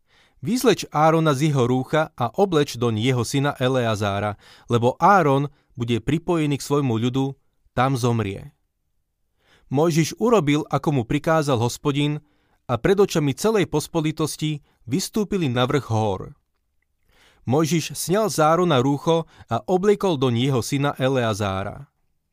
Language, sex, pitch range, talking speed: Slovak, male, 120-160 Hz, 125 wpm